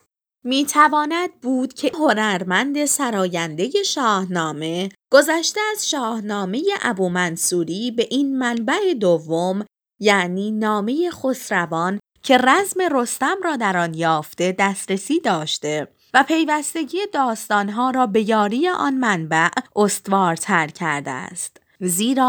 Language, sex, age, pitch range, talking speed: Persian, female, 20-39, 190-290 Hz, 100 wpm